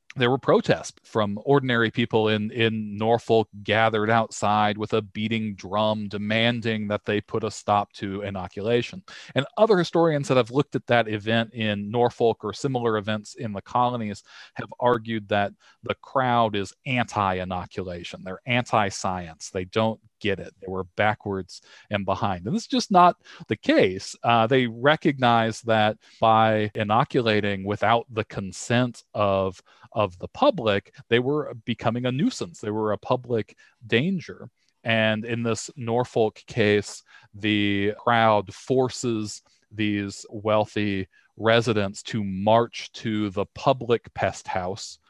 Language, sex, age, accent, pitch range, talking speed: English, male, 40-59, American, 105-120 Hz, 140 wpm